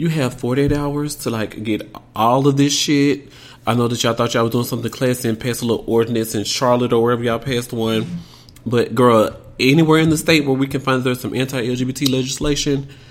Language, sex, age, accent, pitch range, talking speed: English, male, 30-49, American, 110-130 Hz, 215 wpm